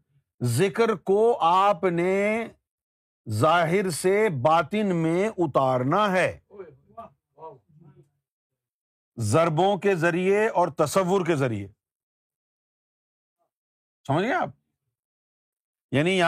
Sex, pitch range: male, 145-230 Hz